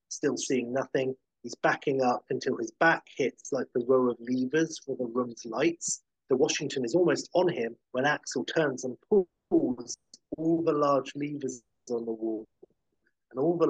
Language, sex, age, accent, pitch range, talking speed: English, male, 30-49, British, 125-155 Hz, 175 wpm